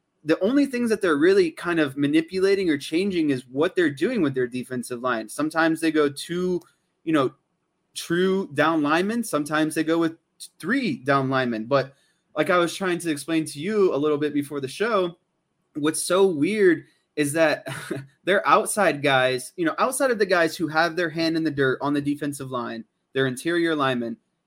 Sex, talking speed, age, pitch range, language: male, 190 wpm, 20-39, 145-190 Hz, English